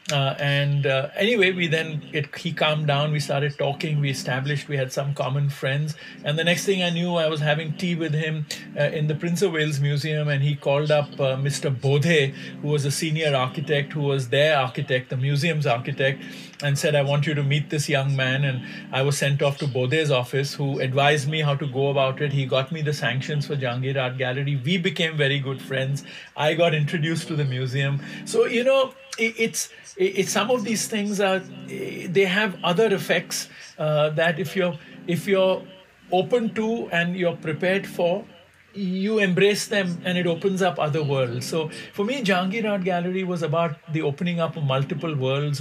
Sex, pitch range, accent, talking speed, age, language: male, 140-180 Hz, Indian, 200 wpm, 50-69, English